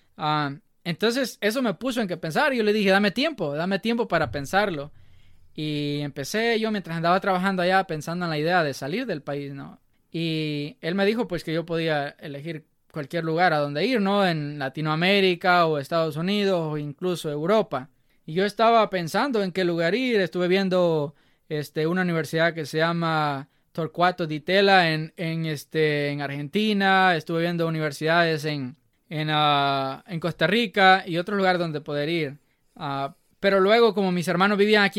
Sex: male